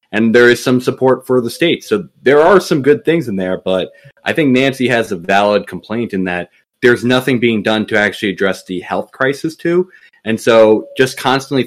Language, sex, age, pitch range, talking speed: English, male, 20-39, 100-120 Hz, 210 wpm